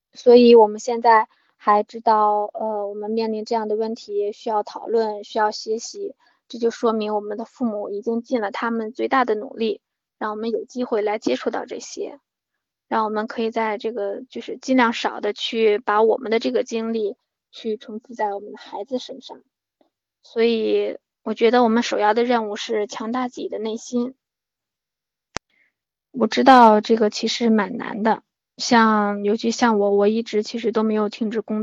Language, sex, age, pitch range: Chinese, female, 20-39, 215-235 Hz